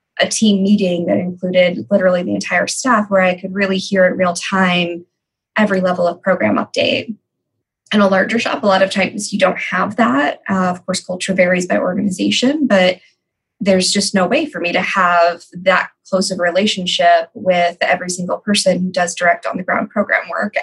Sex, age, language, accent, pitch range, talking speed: female, 20-39, English, American, 180-205 Hz, 195 wpm